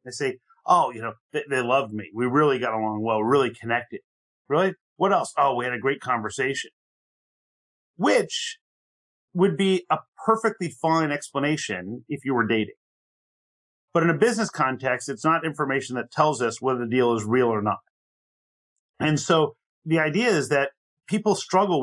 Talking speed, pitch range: 170 wpm, 125-160 Hz